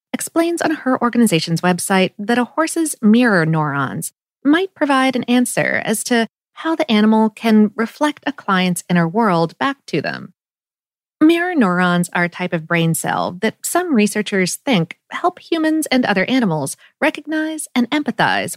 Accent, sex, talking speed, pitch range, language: American, female, 155 wpm, 180-285 Hz, English